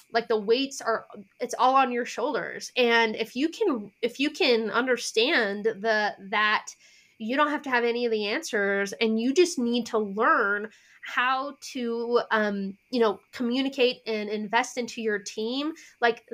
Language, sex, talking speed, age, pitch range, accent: English, female, 170 wpm, 20-39, 215-270 Hz, American